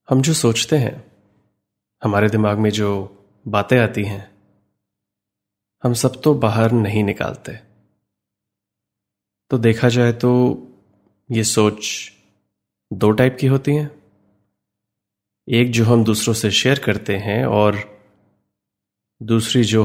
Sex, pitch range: male, 100-110 Hz